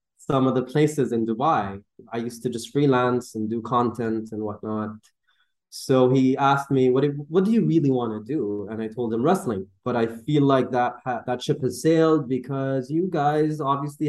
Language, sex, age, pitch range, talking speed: English, male, 20-39, 115-150 Hz, 205 wpm